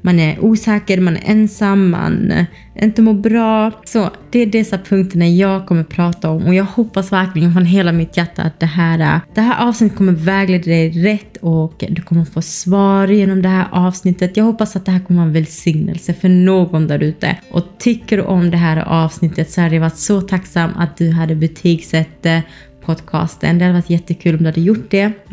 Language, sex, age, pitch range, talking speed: Swedish, female, 20-39, 165-195 Hz, 210 wpm